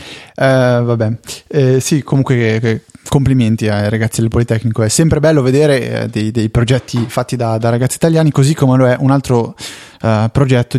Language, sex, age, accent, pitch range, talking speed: Italian, male, 20-39, native, 115-135 Hz, 150 wpm